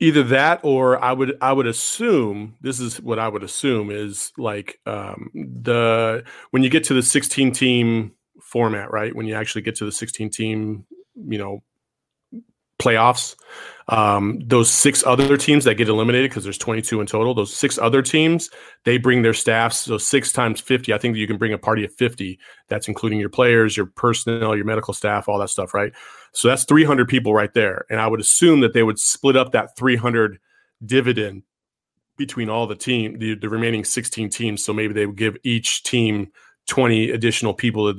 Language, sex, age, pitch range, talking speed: English, male, 30-49, 105-130 Hz, 195 wpm